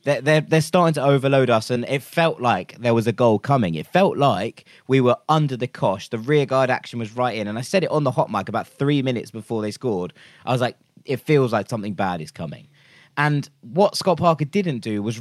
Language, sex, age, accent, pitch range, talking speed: English, male, 20-39, British, 120-160 Hz, 240 wpm